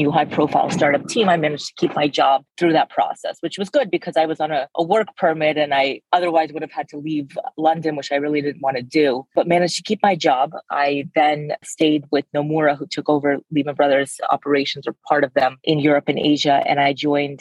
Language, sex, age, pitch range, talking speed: English, female, 30-49, 140-160 Hz, 240 wpm